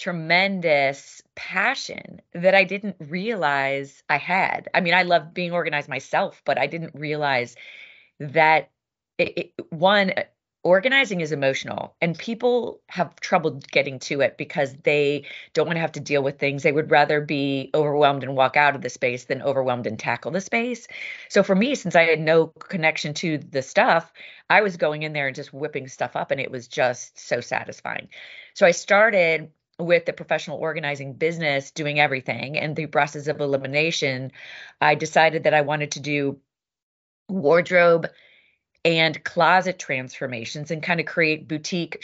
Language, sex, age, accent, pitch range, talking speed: English, female, 30-49, American, 135-165 Hz, 170 wpm